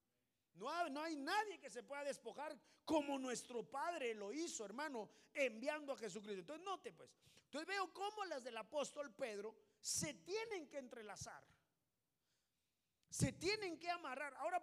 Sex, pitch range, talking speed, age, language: male, 225-320 Hz, 150 wpm, 40-59, Spanish